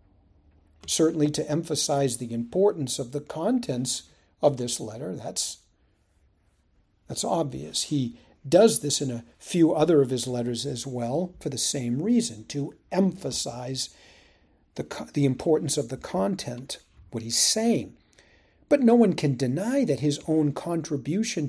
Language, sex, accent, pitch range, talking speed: English, male, American, 120-190 Hz, 140 wpm